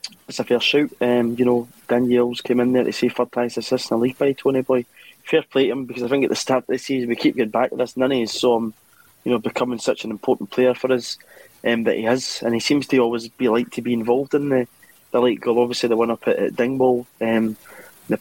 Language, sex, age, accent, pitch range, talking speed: English, male, 20-39, British, 115-125 Hz, 265 wpm